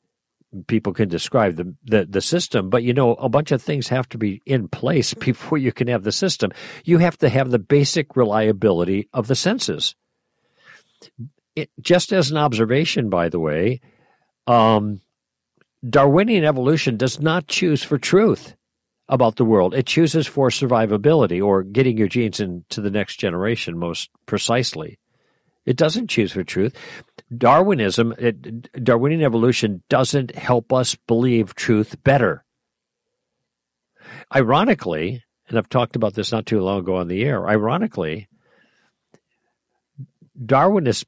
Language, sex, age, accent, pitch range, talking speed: English, male, 50-69, American, 110-145 Hz, 140 wpm